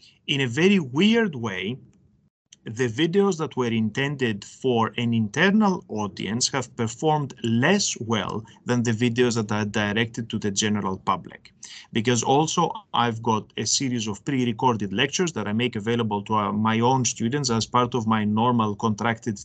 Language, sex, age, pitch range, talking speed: English, male, 30-49, 110-140 Hz, 155 wpm